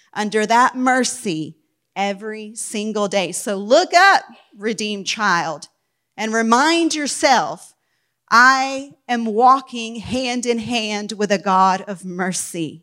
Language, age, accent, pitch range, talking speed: English, 40-59, American, 185-235 Hz, 115 wpm